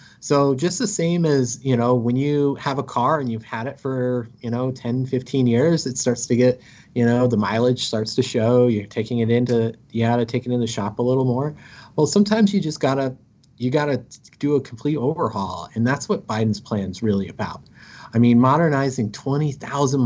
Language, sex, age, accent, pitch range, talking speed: English, male, 30-49, American, 115-135 Hz, 215 wpm